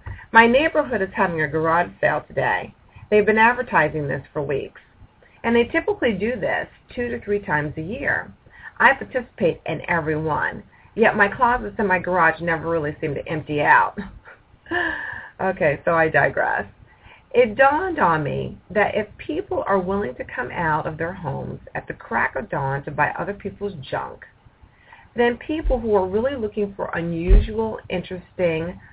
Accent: American